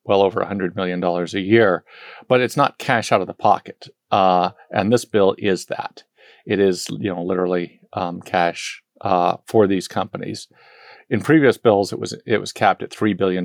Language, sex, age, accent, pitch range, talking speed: English, male, 40-59, American, 95-110 Hz, 195 wpm